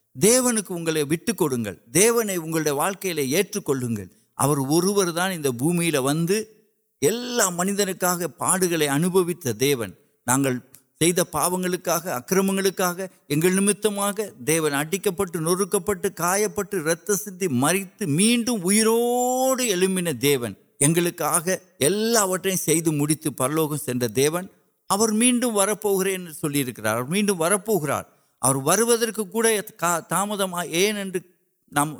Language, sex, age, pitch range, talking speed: Urdu, male, 60-79, 150-205 Hz, 60 wpm